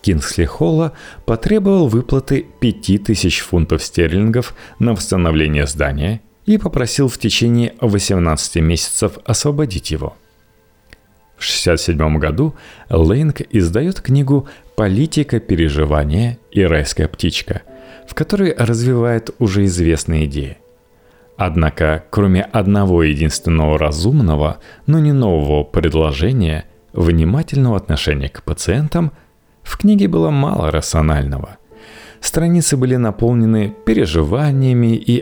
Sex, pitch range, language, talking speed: male, 80-130 Hz, Russian, 100 wpm